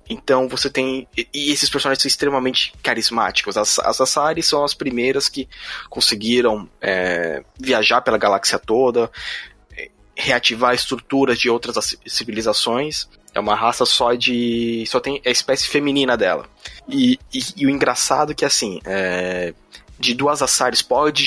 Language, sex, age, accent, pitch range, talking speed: Portuguese, male, 20-39, Brazilian, 115-135 Hz, 140 wpm